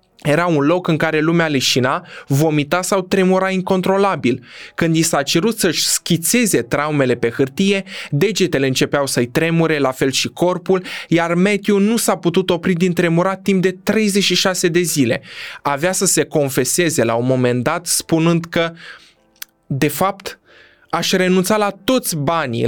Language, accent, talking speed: Romanian, native, 155 wpm